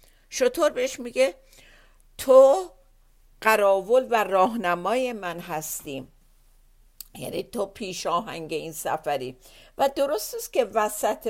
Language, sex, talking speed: Persian, female, 105 wpm